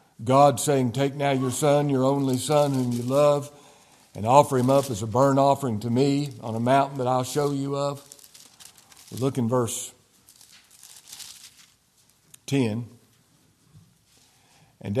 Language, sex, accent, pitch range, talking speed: English, male, American, 125-165 Hz, 140 wpm